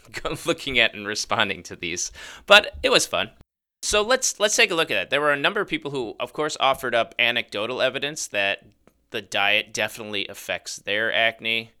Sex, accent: male, American